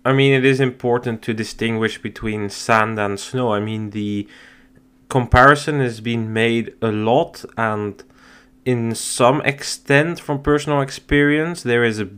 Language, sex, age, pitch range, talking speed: English, male, 20-39, 105-125 Hz, 150 wpm